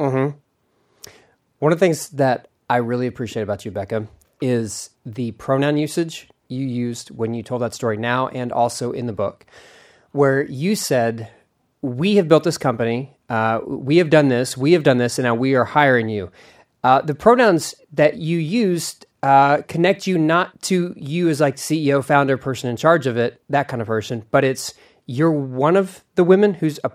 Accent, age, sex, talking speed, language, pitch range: American, 30-49, male, 195 wpm, English, 120-160 Hz